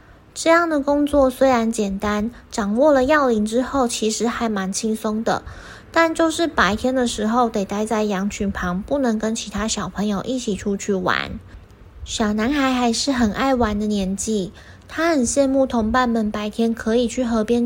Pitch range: 215-265 Hz